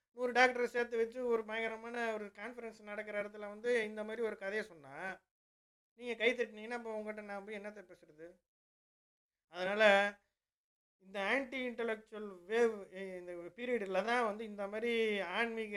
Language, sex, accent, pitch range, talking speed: Tamil, male, native, 205-245 Hz, 140 wpm